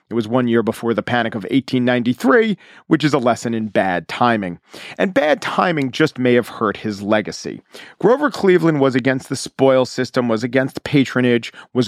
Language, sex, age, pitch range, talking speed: English, male, 40-59, 120-140 Hz, 180 wpm